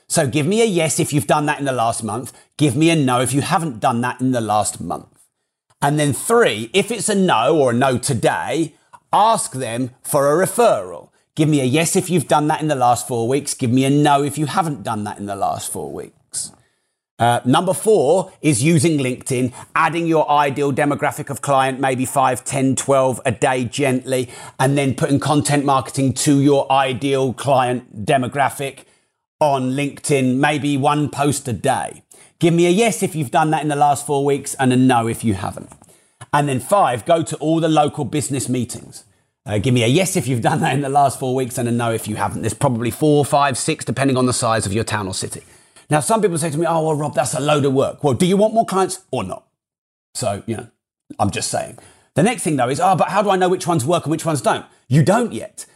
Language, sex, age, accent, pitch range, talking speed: English, male, 30-49, British, 130-165 Hz, 235 wpm